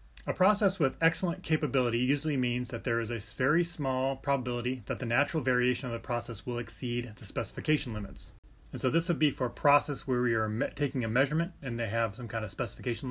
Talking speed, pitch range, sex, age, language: 215 wpm, 115-140 Hz, male, 30-49, English